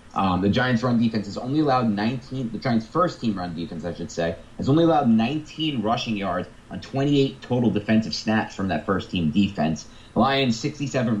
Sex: male